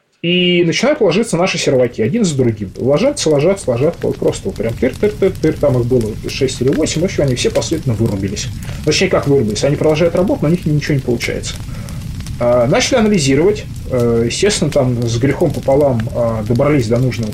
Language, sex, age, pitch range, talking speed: Russian, male, 20-39, 110-145 Hz, 170 wpm